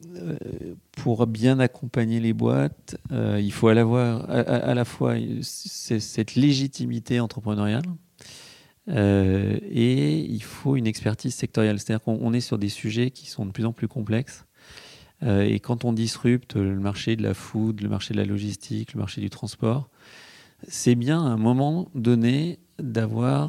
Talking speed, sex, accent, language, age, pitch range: 165 wpm, male, French, French, 40-59, 105-130 Hz